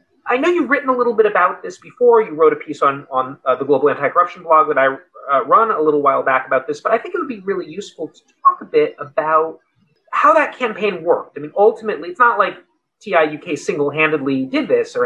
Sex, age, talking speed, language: male, 30-49, 235 wpm, English